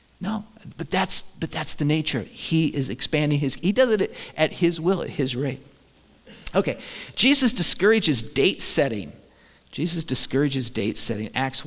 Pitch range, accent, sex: 125-170 Hz, American, male